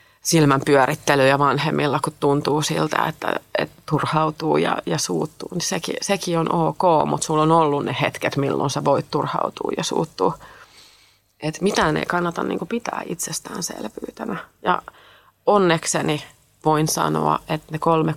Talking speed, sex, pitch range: 145 wpm, female, 145-170 Hz